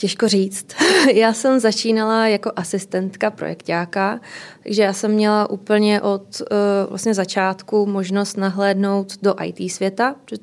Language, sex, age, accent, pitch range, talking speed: Czech, female, 20-39, native, 190-215 Hz, 130 wpm